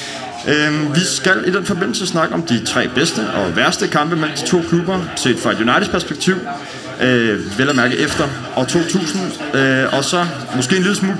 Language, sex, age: Danish, male, 30-49